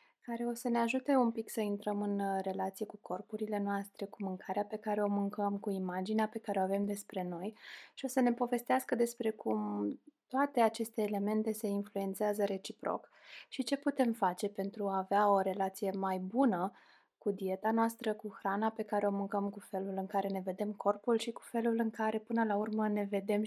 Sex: female